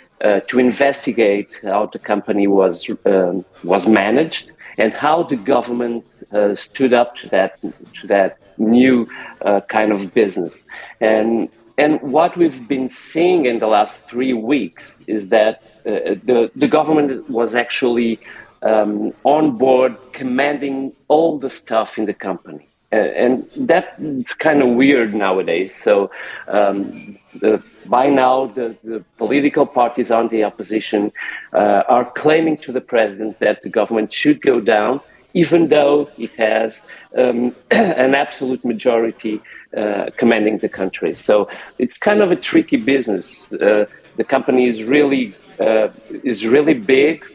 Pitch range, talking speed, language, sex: 110-140 Hz, 145 wpm, English, male